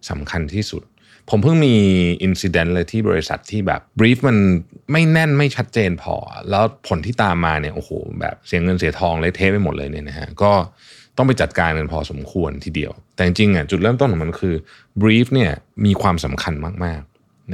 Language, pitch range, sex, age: Thai, 85-115 Hz, male, 30-49